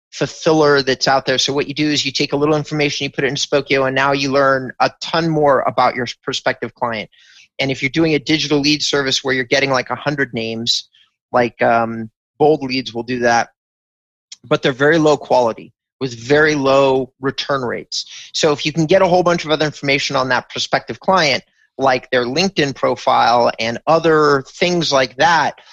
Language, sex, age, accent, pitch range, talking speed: English, male, 30-49, American, 130-155 Hz, 200 wpm